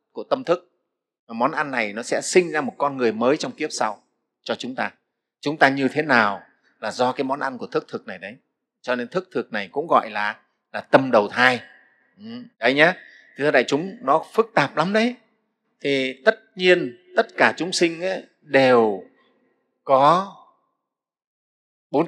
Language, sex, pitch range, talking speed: Vietnamese, male, 125-175 Hz, 180 wpm